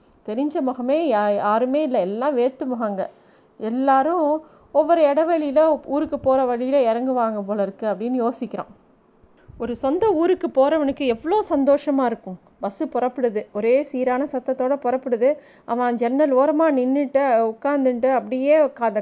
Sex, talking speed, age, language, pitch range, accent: female, 125 wpm, 30-49, Tamil, 235-295 Hz, native